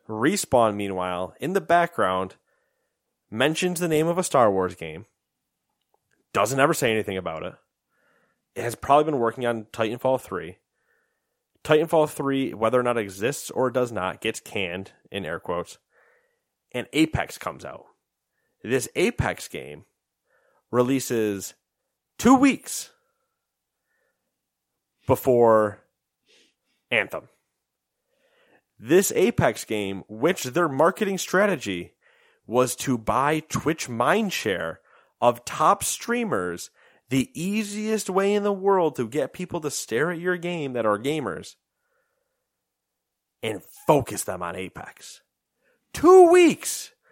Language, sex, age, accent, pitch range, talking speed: English, male, 30-49, American, 120-180 Hz, 120 wpm